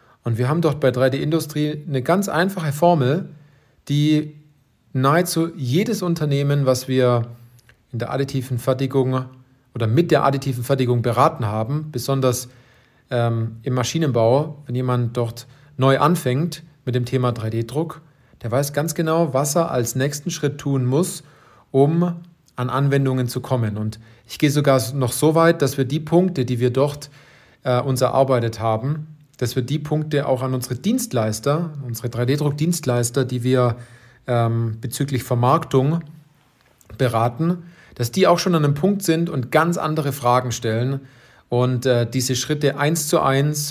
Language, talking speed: German, 150 wpm